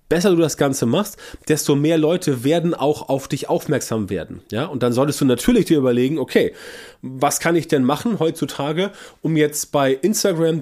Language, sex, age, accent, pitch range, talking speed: German, male, 30-49, German, 130-155 Hz, 185 wpm